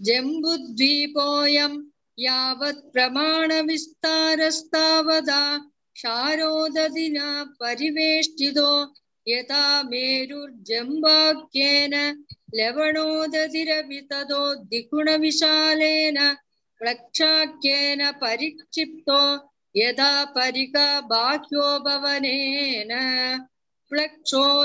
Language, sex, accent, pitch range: Tamil, female, native, 275-310 Hz